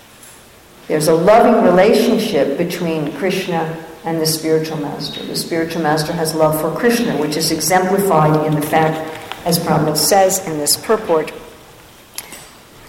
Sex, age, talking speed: female, 50-69, 145 wpm